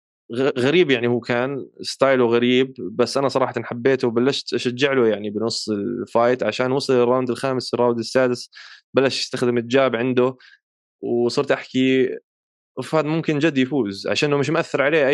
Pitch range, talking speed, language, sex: 120-155 Hz, 145 wpm, Arabic, male